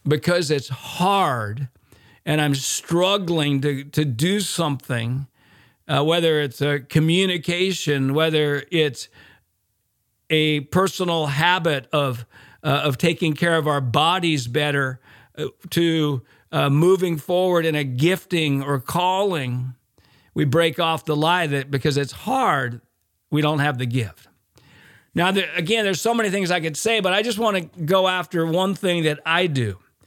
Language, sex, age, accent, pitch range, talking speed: English, male, 50-69, American, 140-170 Hz, 150 wpm